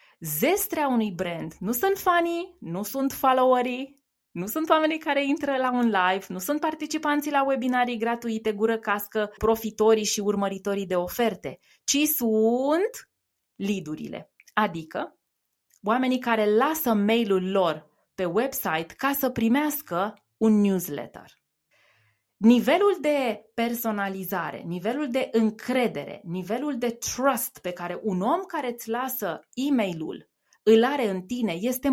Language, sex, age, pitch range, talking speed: Romanian, female, 20-39, 200-275 Hz, 130 wpm